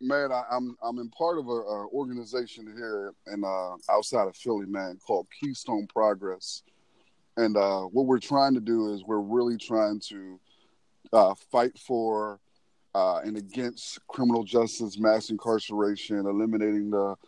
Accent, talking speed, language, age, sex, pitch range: American, 150 wpm, English, 30-49, male, 105-130 Hz